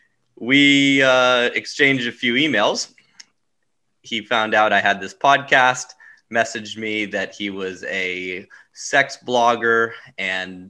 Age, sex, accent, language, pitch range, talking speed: 20-39, male, American, English, 105-130 Hz, 125 wpm